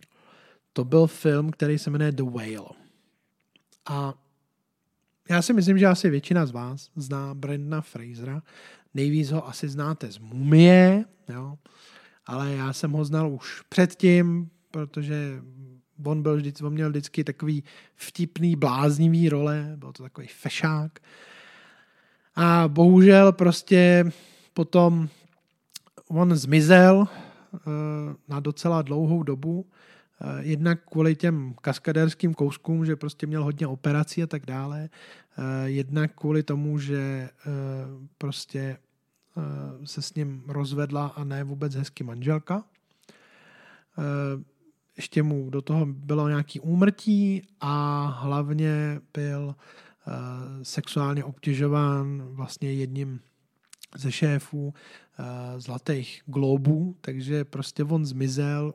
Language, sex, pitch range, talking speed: Czech, male, 140-170 Hz, 110 wpm